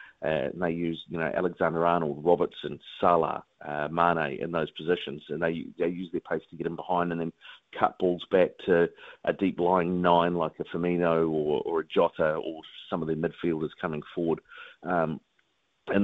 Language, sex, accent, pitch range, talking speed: English, male, Australian, 80-95 Hz, 190 wpm